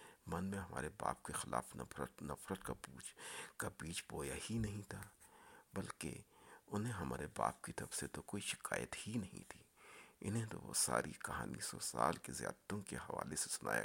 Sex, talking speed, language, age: male, 180 wpm, Urdu, 50-69